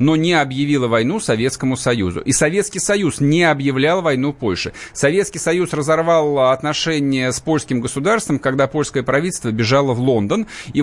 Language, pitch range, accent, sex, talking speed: Russian, 130-170 Hz, native, male, 150 wpm